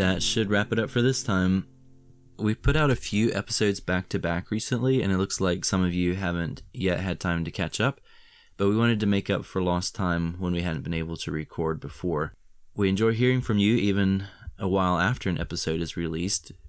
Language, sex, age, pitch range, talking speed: English, male, 20-39, 85-100 Hz, 215 wpm